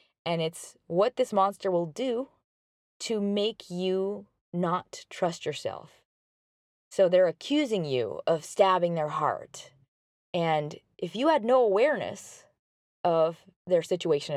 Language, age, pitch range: English, 20-39, 160-215 Hz